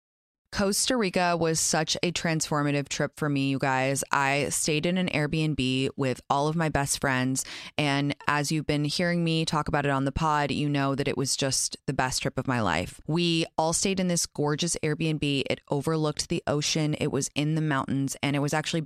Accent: American